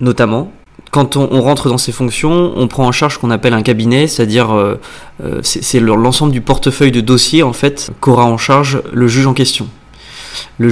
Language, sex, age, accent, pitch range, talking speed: French, male, 20-39, French, 115-140 Hz, 195 wpm